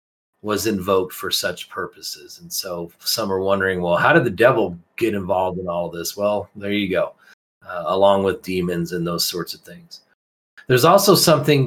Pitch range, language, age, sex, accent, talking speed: 100-125 Hz, English, 40-59, male, American, 185 wpm